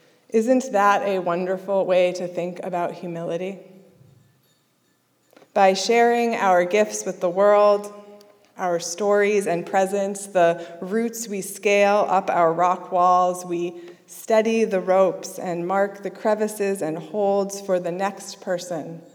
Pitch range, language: 170-205 Hz, English